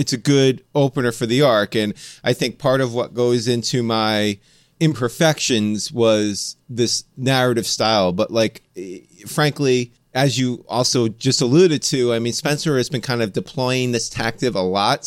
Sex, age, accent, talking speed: male, 30-49, American, 165 wpm